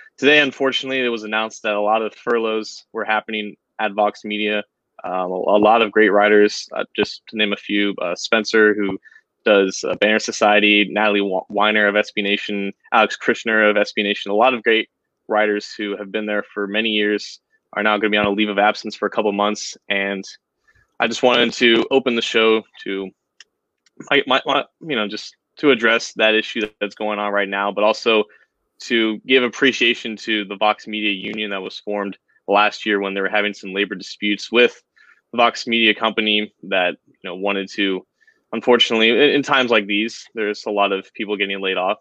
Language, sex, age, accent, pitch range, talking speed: English, male, 20-39, American, 100-115 Hz, 205 wpm